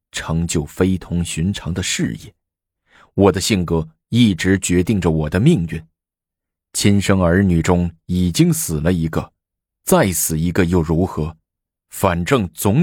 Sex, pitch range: male, 80-95 Hz